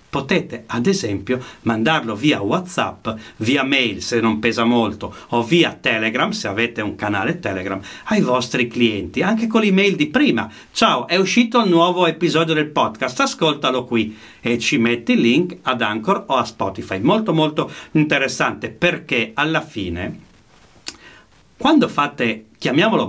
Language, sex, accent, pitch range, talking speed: Italian, male, native, 120-185 Hz, 150 wpm